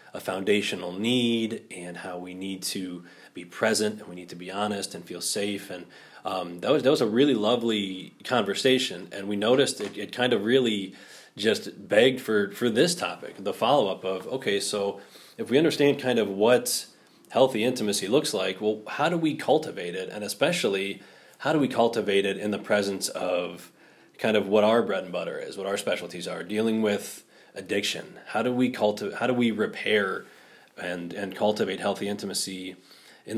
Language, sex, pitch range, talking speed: English, male, 95-110 Hz, 185 wpm